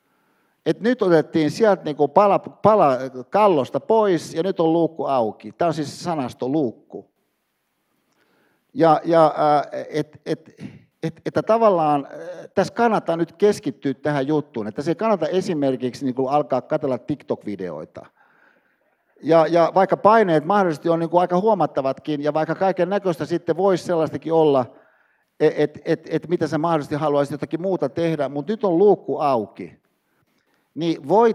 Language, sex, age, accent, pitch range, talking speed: Finnish, male, 60-79, native, 145-195 Hz, 140 wpm